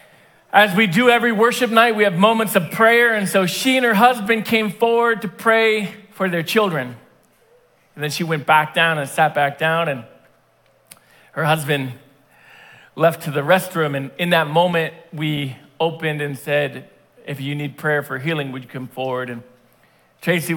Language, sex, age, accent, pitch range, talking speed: English, male, 40-59, American, 150-210 Hz, 180 wpm